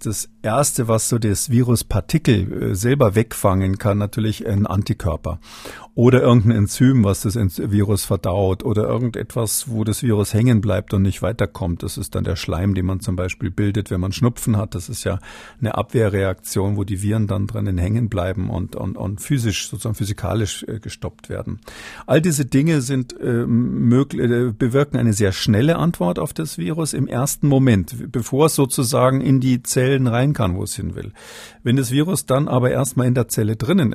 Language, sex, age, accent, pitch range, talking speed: German, male, 50-69, German, 105-125 Hz, 185 wpm